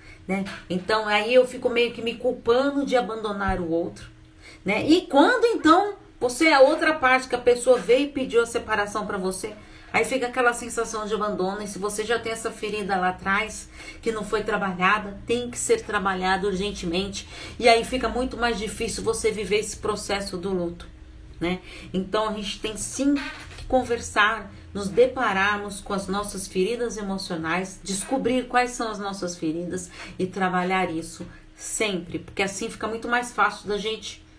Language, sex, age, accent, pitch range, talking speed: Portuguese, female, 40-59, Brazilian, 190-240 Hz, 175 wpm